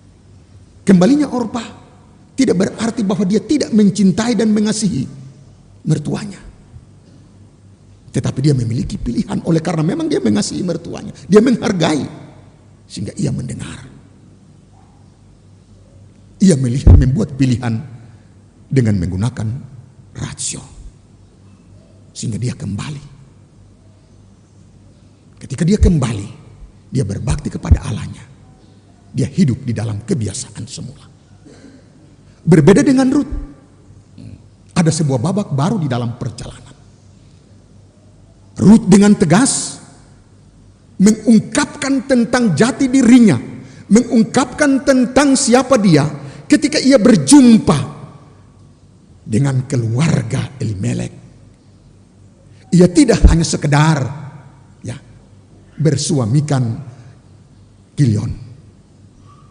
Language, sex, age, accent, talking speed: Indonesian, male, 50-69, native, 85 wpm